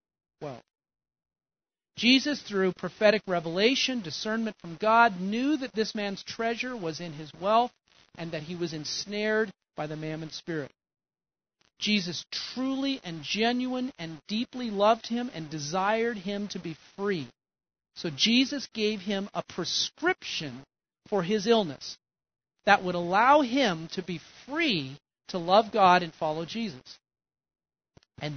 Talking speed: 135 wpm